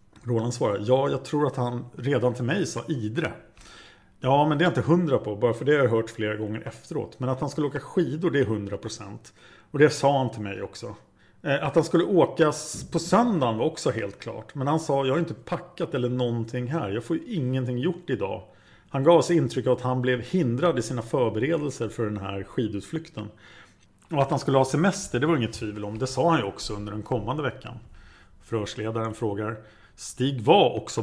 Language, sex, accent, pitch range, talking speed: Swedish, male, Norwegian, 110-155 Hz, 215 wpm